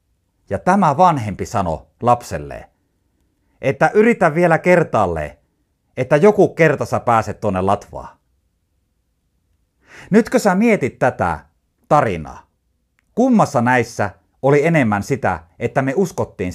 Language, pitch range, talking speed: Finnish, 90-150 Hz, 105 wpm